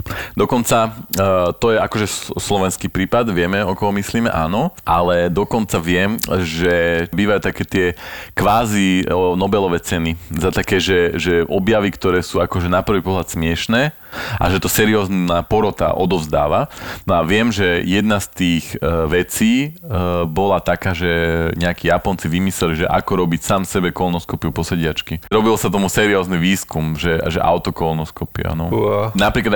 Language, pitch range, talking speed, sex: Slovak, 85-100 Hz, 140 wpm, male